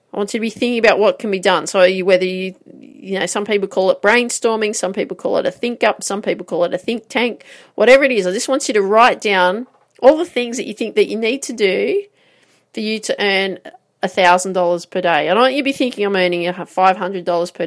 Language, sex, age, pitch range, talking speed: English, female, 40-59, 185-255 Hz, 255 wpm